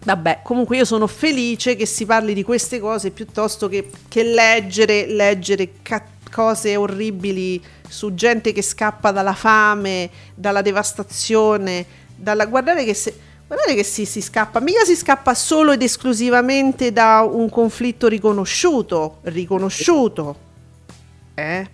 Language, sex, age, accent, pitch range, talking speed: Italian, female, 40-59, native, 200-245 Hz, 120 wpm